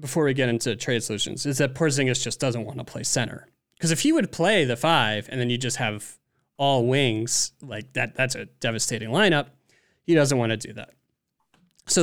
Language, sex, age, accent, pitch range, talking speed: English, male, 30-49, American, 115-145 Hz, 210 wpm